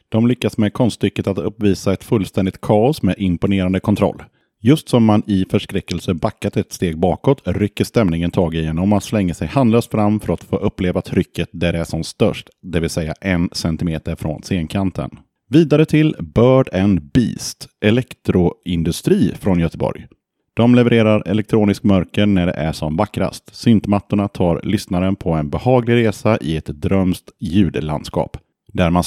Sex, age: male, 30-49